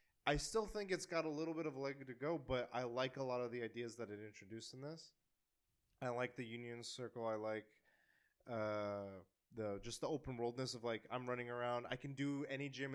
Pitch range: 115-140 Hz